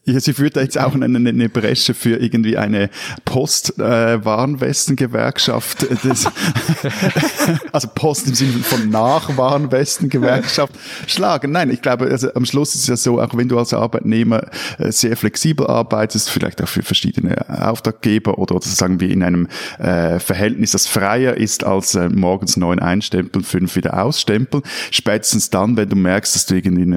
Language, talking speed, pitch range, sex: German, 165 wpm, 100-125 Hz, male